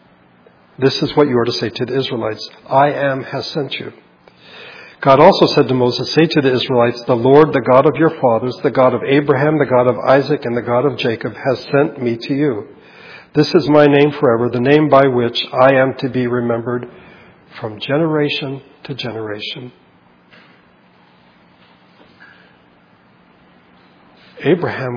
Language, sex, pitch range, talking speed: English, male, 120-140 Hz, 165 wpm